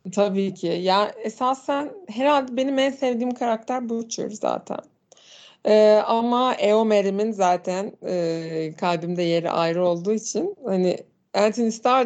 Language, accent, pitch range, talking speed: Turkish, native, 180-225 Hz, 120 wpm